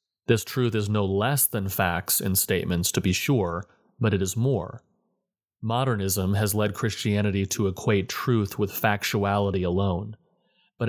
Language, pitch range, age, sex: English, 100-115 Hz, 30-49, male